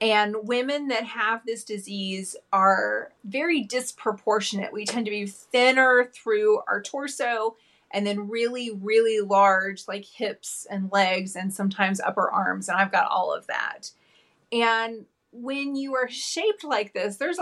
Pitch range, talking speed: 205-245 Hz, 150 wpm